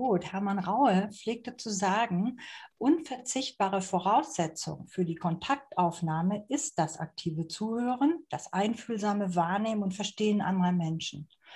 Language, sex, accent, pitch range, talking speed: German, female, German, 170-200 Hz, 115 wpm